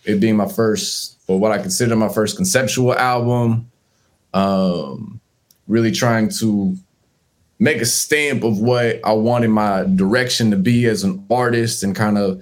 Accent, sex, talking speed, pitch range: American, male, 160 wpm, 100-120 Hz